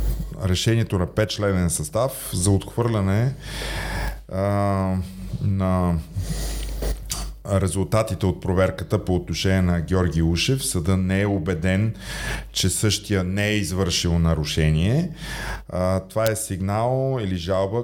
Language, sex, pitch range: Bulgarian, male, 90-115 Hz